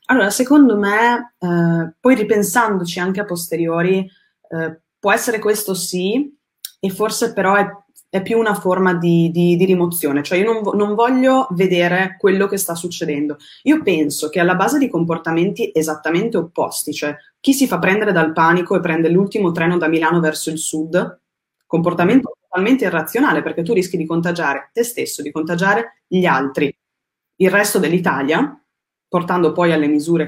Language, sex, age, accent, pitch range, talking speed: Italian, female, 20-39, native, 160-205 Hz, 165 wpm